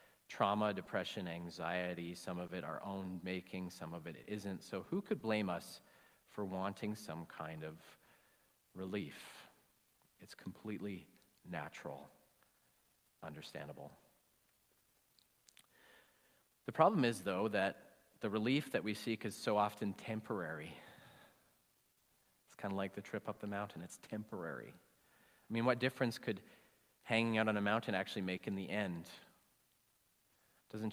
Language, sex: English, male